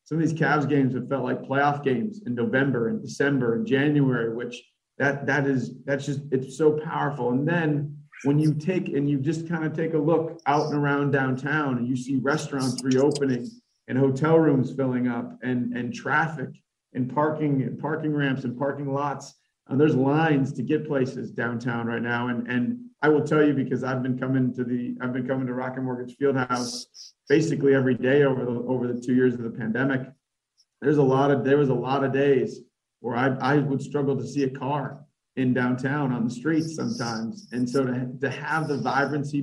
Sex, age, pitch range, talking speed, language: male, 40-59, 125-145 Hz, 205 wpm, English